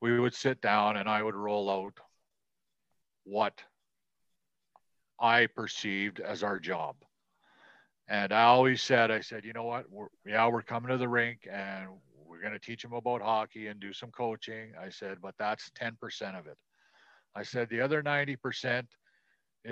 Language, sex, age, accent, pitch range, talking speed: English, male, 50-69, American, 110-130 Hz, 165 wpm